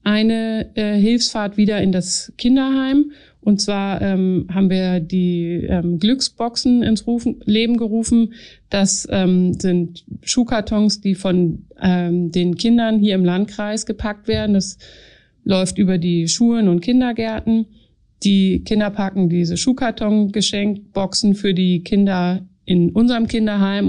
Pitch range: 185-220 Hz